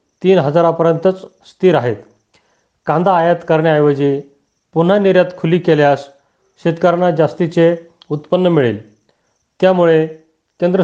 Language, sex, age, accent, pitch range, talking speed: Marathi, male, 40-59, native, 160-180 Hz, 95 wpm